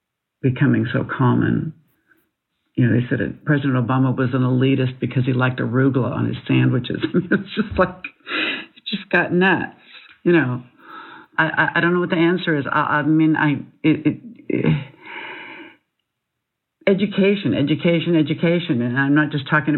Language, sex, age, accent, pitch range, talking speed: English, female, 60-79, American, 145-185 Hz, 165 wpm